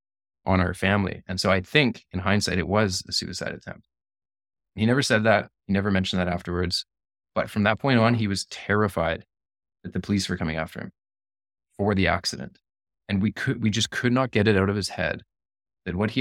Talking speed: 210 wpm